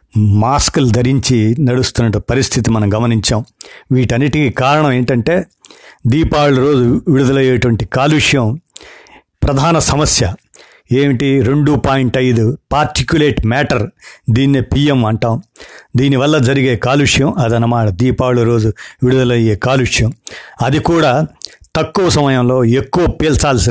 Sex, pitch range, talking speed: male, 120-145 Hz, 90 wpm